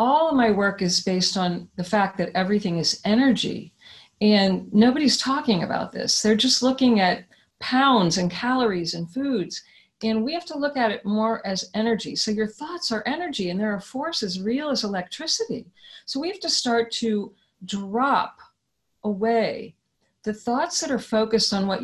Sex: female